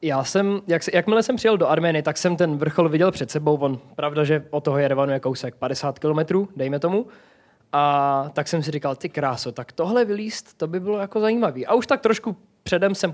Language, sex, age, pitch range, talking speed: Czech, male, 20-39, 150-205 Hz, 215 wpm